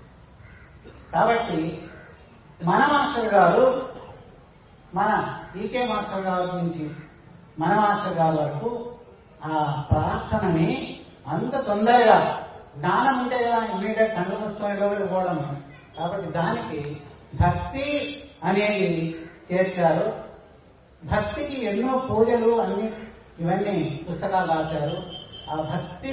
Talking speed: 80 wpm